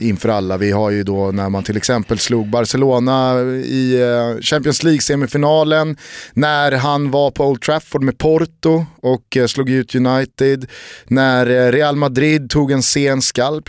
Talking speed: 155 wpm